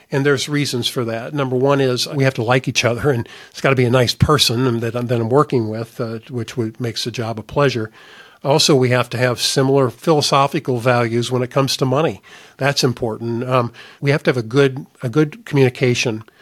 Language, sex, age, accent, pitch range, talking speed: English, male, 50-69, American, 120-140 Hz, 215 wpm